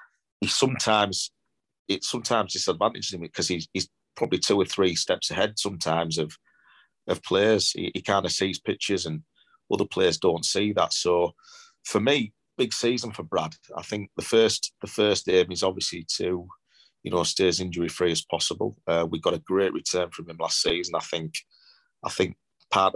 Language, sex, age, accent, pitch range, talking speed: English, male, 30-49, British, 85-105 Hz, 185 wpm